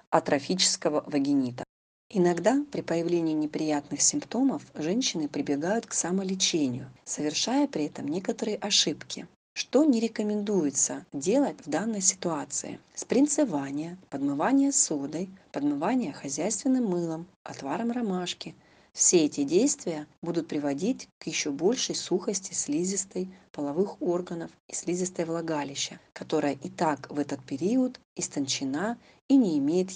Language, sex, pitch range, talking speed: Russian, female, 150-220 Hz, 110 wpm